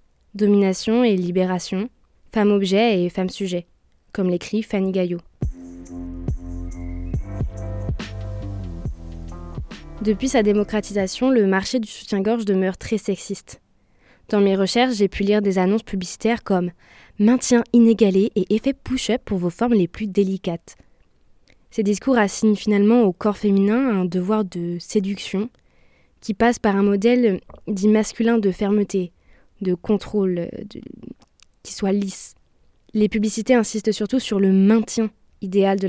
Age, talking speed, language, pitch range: 20-39, 130 wpm, French, 185-220 Hz